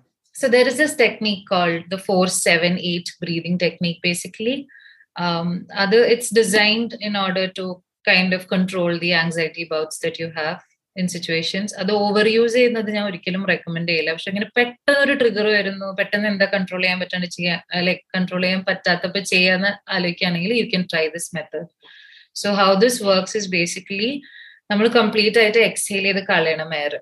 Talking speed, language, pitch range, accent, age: 160 wpm, Malayalam, 175-215 Hz, native, 30-49